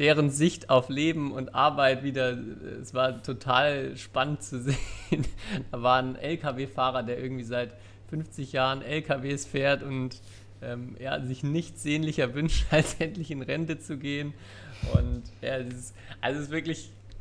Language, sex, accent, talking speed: German, male, German, 160 wpm